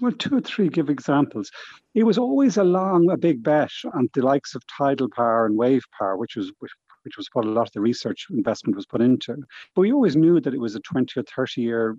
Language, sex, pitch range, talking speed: English, male, 115-155 Hz, 245 wpm